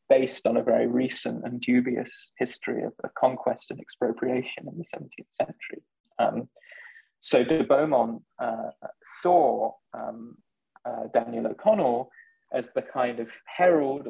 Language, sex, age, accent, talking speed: English, male, 20-39, British, 135 wpm